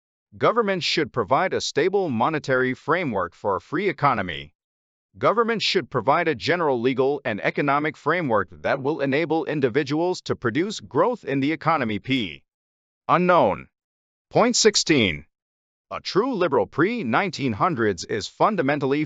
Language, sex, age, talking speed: English, male, 40-59, 125 wpm